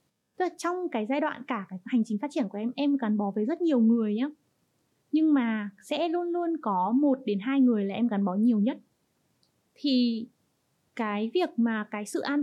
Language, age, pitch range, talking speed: Vietnamese, 20-39, 210-275 Hz, 215 wpm